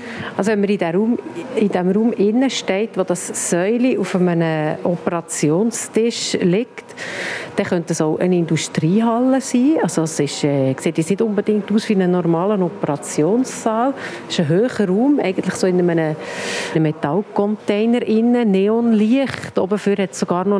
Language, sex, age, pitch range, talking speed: German, female, 50-69, 180-230 Hz, 150 wpm